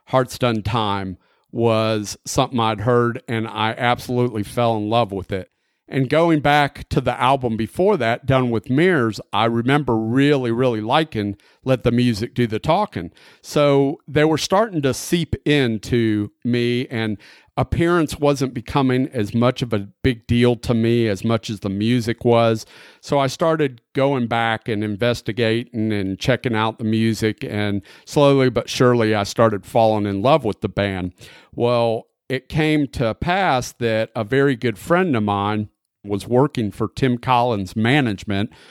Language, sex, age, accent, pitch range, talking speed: English, male, 40-59, American, 110-130 Hz, 165 wpm